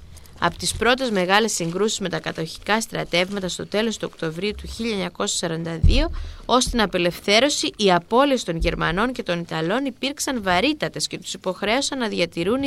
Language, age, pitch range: Greek, 20-39, 170-225 Hz